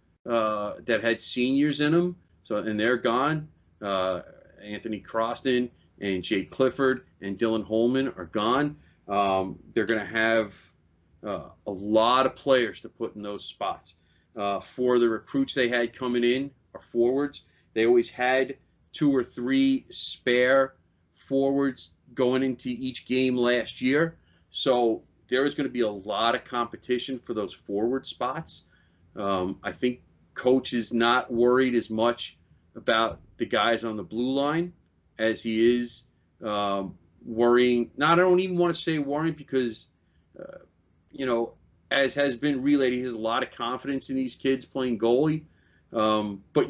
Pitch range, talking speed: 110-135 Hz, 160 wpm